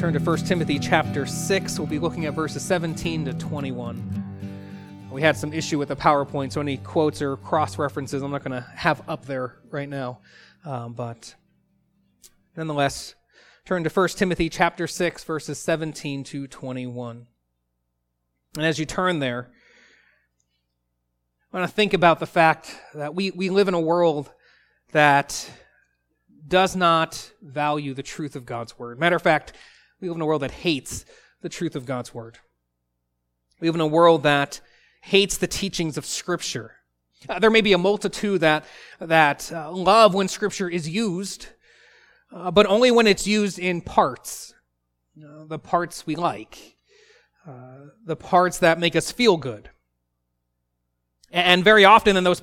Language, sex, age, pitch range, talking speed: English, male, 30-49, 125-180 Hz, 165 wpm